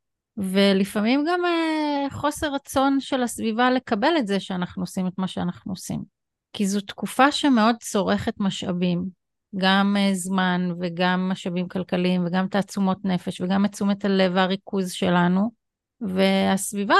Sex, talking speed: female, 125 wpm